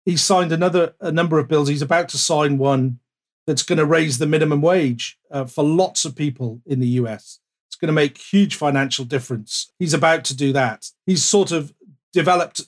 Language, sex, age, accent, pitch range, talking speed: English, male, 40-59, British, 140-165 Hz, 205 wpm